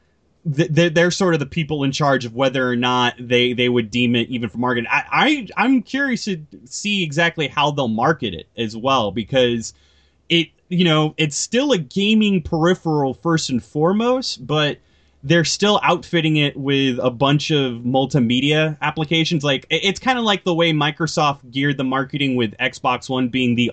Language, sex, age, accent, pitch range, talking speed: English, male, 20-39, American, 120-155 Hz, 180 wpm